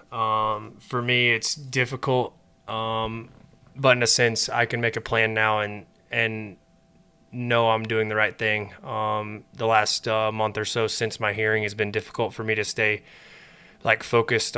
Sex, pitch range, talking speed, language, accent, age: male, 110-120 Hz, 175 wpm, English, American, 20-39